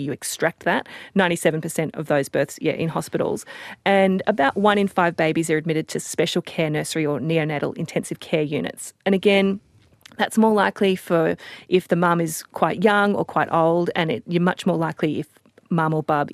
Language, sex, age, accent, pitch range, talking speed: English, female, 30-49, Australian, 160-205 Hz, 185 wpm